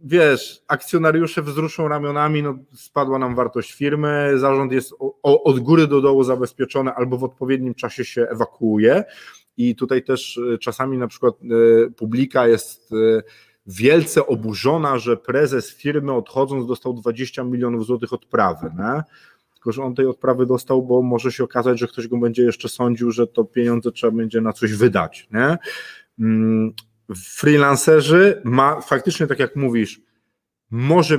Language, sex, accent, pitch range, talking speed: Polish, male, native, 115-135 Hz, 150 wpm